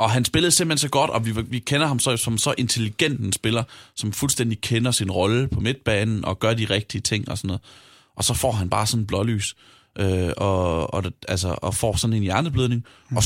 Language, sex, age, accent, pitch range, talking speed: Danish, male, 30-49, native, 100-120 Hz, 220 wpm